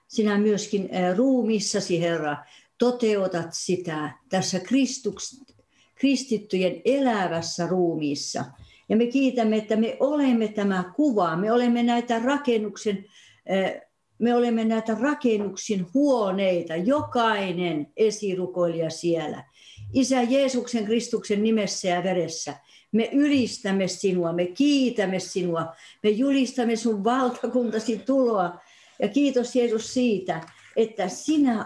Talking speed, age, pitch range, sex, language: 105 wpm, 60-79, 180-240 Hz, female, Finnish